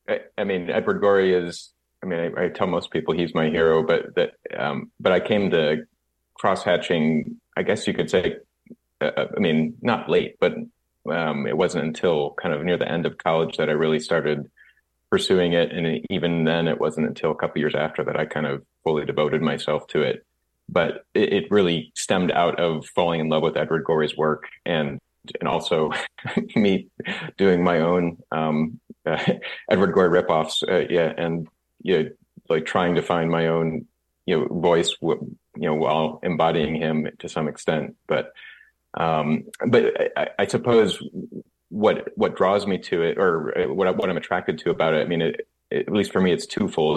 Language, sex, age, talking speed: English, male, 30-49, 195 wpm